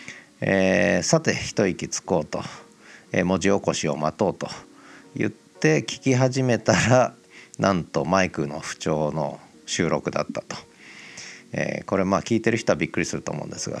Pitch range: 85-115 Hz